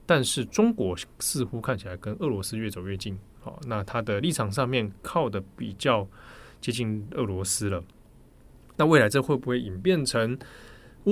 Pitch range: 105-145 Hz